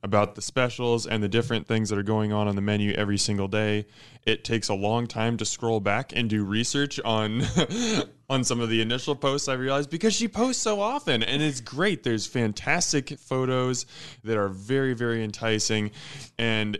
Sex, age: male, 20-39